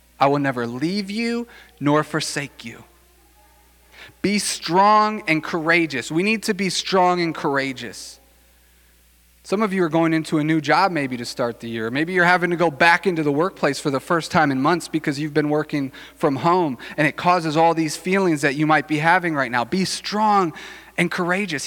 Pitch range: 130-190 Hz